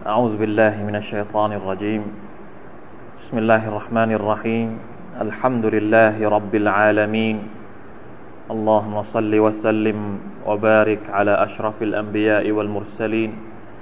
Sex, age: male, 20-39